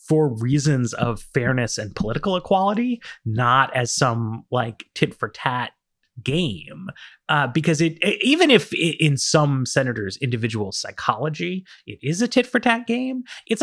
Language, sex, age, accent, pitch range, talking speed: English, male, 30-49, American, 120-190 Hz, 155 wpm